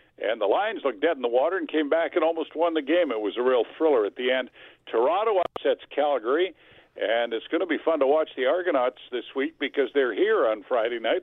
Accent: American